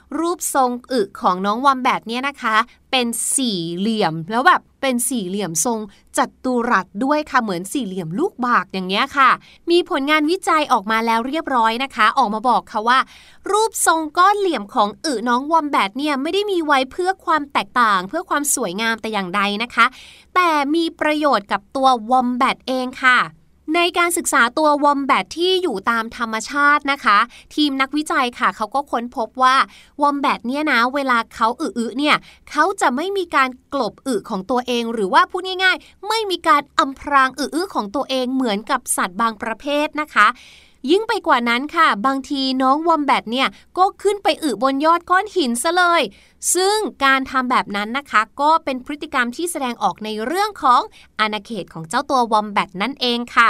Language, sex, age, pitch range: Thai, female, 20-39, 235-315 Hz